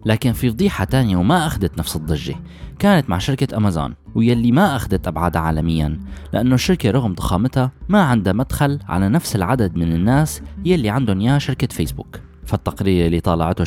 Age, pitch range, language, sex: 20-39, 90-135 Hz, Arabic, male